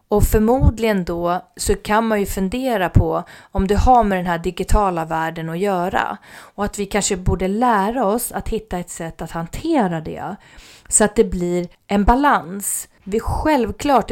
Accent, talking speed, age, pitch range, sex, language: Swedish, 175 wpm, 30-49, 165-220 Hz, female, English